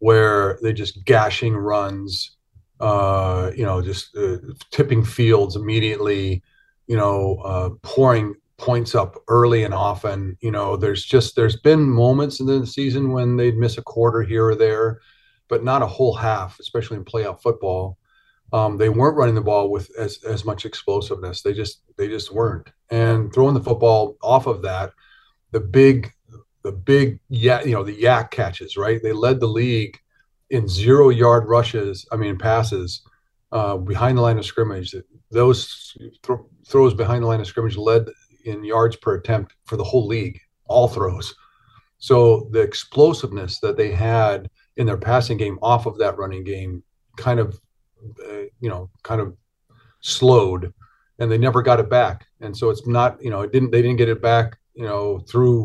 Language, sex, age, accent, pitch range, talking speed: English, male, 40-59, American, 105-120 Hz, 175 wpm